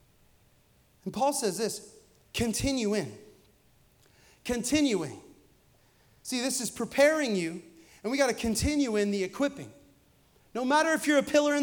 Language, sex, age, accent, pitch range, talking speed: English, male, 30-49, American, 155-215 Hz, 140 wpm